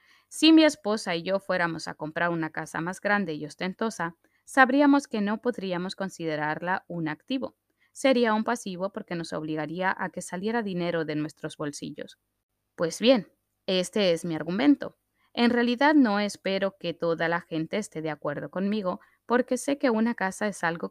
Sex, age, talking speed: female, 20-39, 170 wpm